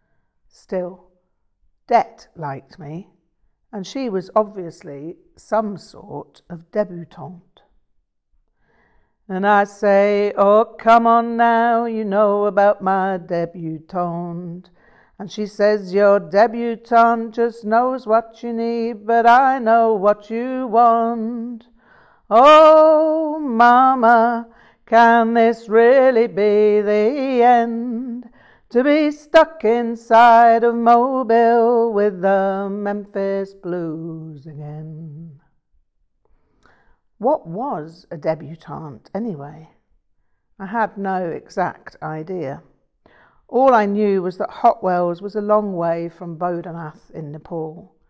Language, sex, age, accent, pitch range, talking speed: English, female, 60-79, British, 175-230 Hz, 105 wpm